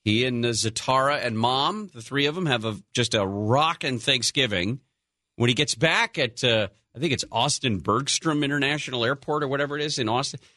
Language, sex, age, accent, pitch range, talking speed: English, male, 40-59, American, 115-160 Hz, 185 wpm